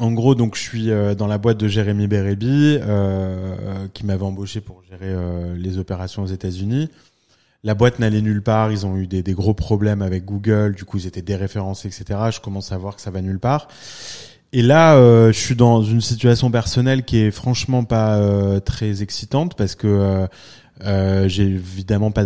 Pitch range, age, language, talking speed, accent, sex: 100-115 Hz, 20-39, French, 200 wpm, French, male